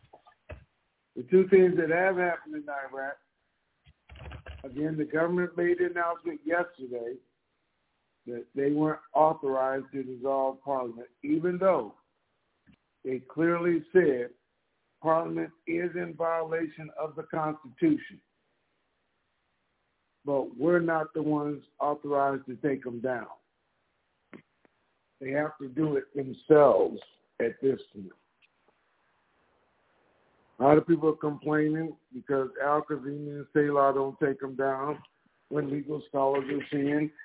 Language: English